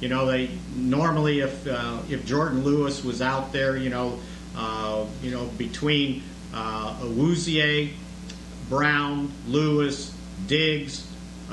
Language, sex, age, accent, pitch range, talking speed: English, male, 50-69, American, 125-160 Hz, 120 wpm